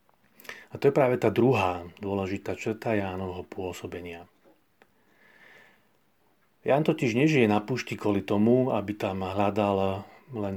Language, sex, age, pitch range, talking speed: Slovak, male, 40-59, 95-115 Hz, 120 wpm